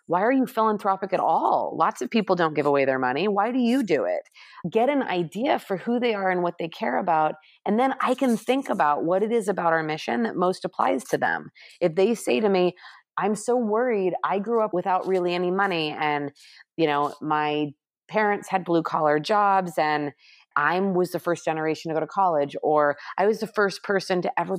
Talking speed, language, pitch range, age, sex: 220 wpm, English, 160-205 Hz, 30-49, female